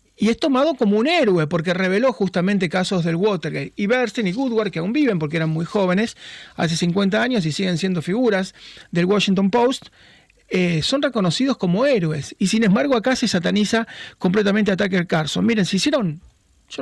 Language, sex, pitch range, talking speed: Spanish, male, 170-215 Hz, 185 wpm